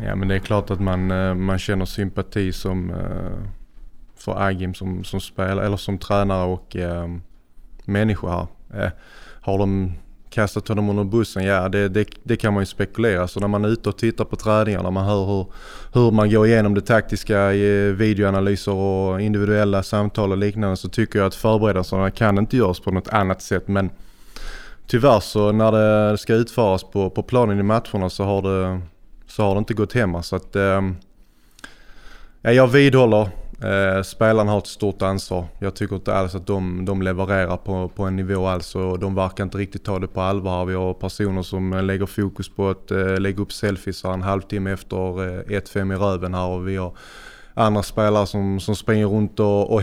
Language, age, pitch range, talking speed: Swedish, 20-39, 95-105 Hz, 190 wpm